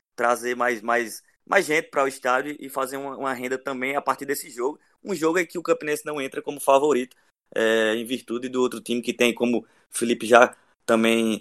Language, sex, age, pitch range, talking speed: Portuguese, male, 20-39, 120-145 Hz, 210 wpm